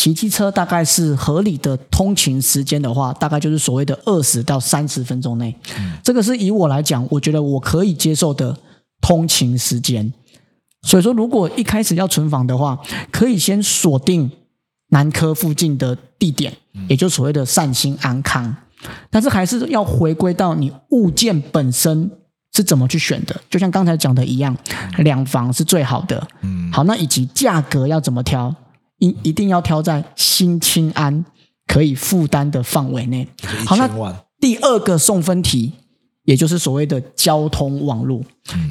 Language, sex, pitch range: Chinese, male, 135-175 Hz